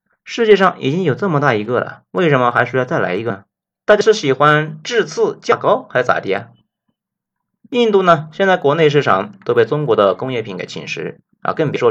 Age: 30-49